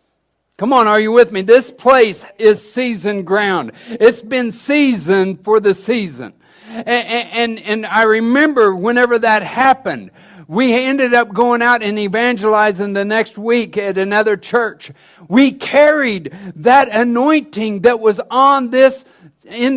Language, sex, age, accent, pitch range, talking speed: English, male, 60-79, American, 215-270 Hz, 145 wpm